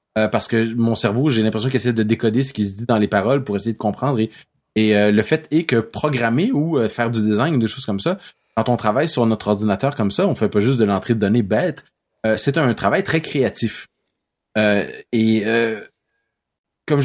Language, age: French, 30-49